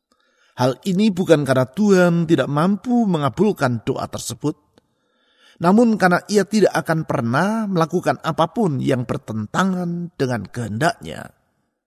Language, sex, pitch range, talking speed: Indonesian, male, 130-185 Hz, 110 wpm